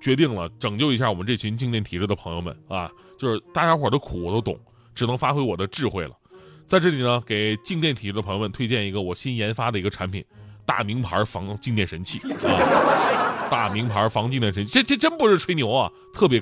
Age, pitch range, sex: 20-39, 105-160 Hz, male